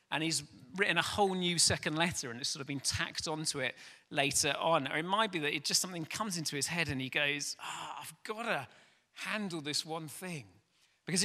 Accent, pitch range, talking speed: British, 140-185 Hz, 225 wpm